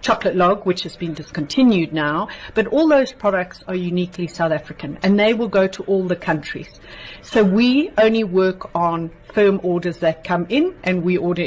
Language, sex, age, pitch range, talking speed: English, female, 60-79, 165-210 Hz, 190 wpm